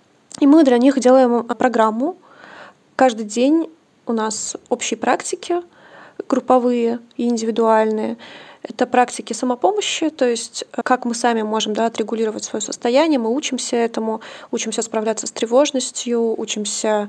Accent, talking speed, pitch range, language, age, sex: native, 125 wpm, 225-260 Hz, Russian, 20-39, female